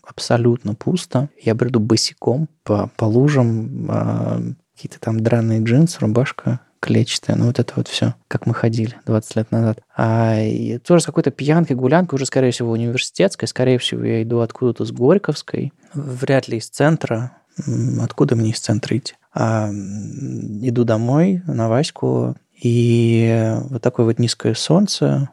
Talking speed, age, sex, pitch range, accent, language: 150 wpm, 20-39, male, 115-140 Hz, native, Russian